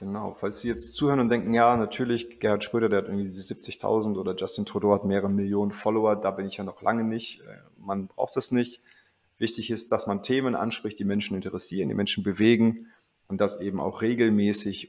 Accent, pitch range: German, 95-110 Hz